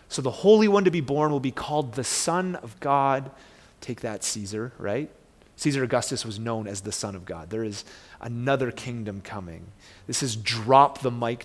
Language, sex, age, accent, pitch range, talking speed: English, male, 30-49, American, 115-155 Hz, 185 wpm